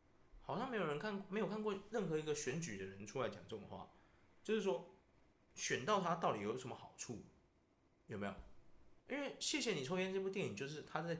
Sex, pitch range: male, 130-210 Hz